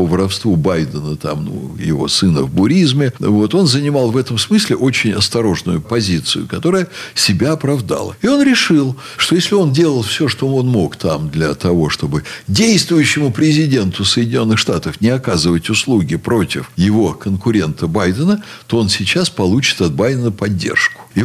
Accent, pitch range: native, 105-165 Hz